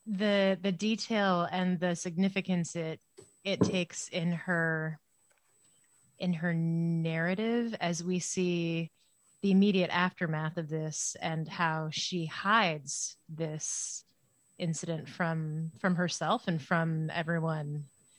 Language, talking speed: English, 110 wpm